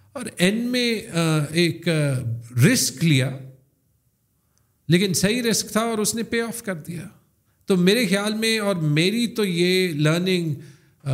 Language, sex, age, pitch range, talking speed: Urdu, male, 50-69, 130-180 Hz, 140 wpm